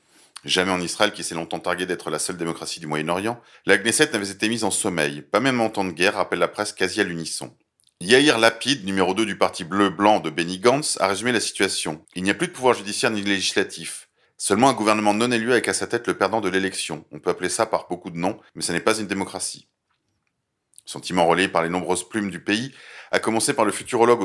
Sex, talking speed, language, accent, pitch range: male, 245 wpm, French, French, 90-110 Hz